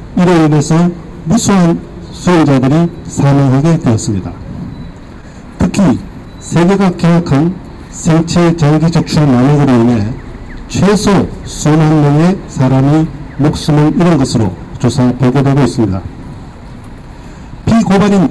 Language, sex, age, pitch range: Korean, male, 50-69, 135-175 Hz